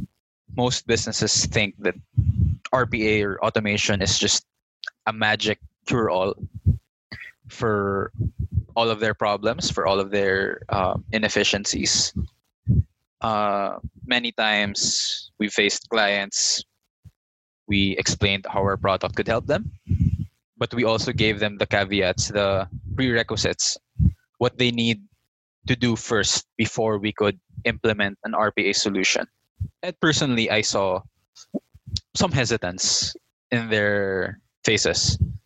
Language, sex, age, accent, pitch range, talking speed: English, male, 20-39, Filipino, 100-115 Hz, 115 wpm